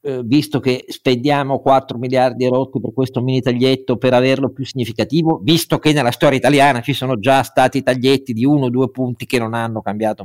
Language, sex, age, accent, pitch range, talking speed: Italian, male, 50-69, native, 120-175 Hz, 195 wpm